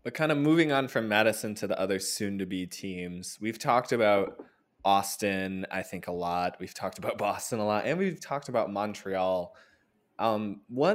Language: English